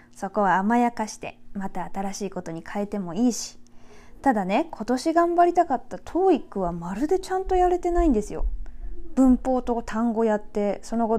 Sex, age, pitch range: female, 20-39, 180-265 Hz